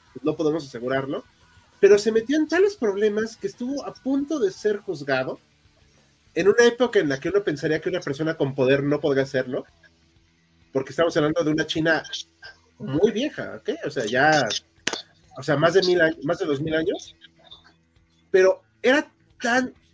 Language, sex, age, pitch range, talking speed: Spanish, male, 30-49, 145-235 Hz, 175 wpm